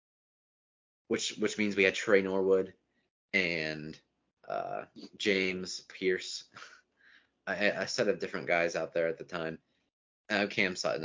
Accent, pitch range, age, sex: American, 80-100 Hz, 20-39, male